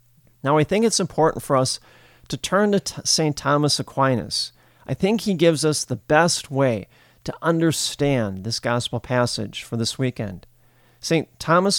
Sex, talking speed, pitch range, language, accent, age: male, 160 wpm, 120-155 Hz, English, American, 40-59